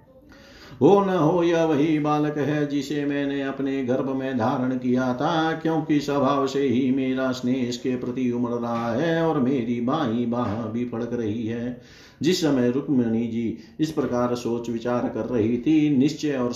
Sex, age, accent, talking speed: male, 50-69, native, 180 wpm